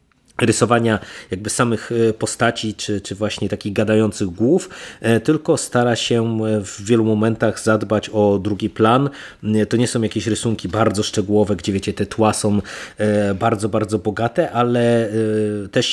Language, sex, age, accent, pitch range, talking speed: Polish, male, 30-49, native, 105-120 Hz, 140 wpm